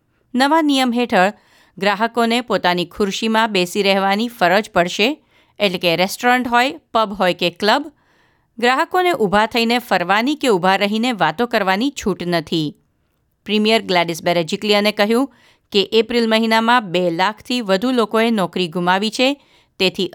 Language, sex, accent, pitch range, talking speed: Gujarati, female, native, 180-240 Hz, 130 wpm